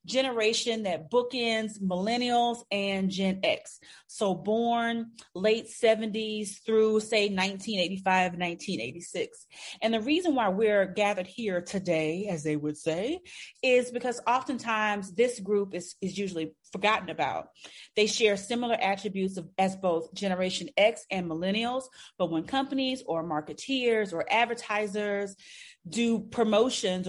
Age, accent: 30-49, American